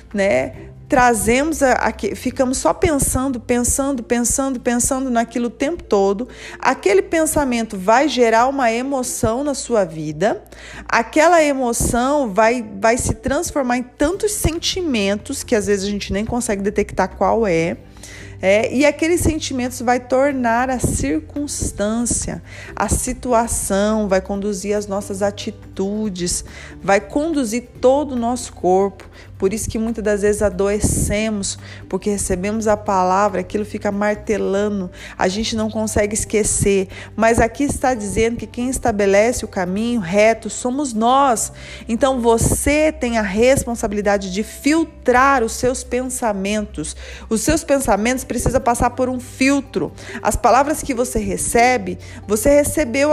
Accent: Brazilian